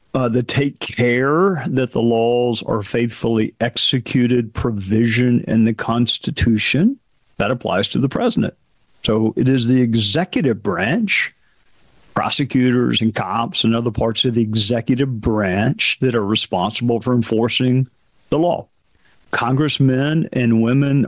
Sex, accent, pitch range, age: male, American, 115-180 Hz, 50-69